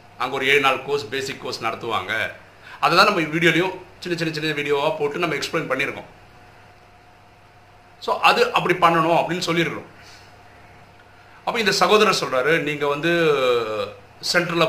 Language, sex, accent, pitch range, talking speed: Tamil, male, native, 120-165 Hz, 135 wpm